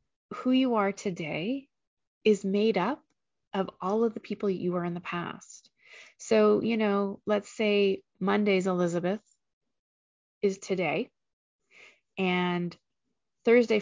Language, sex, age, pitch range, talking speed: English, female, 30-49, 175-215 Hz, 120 wpm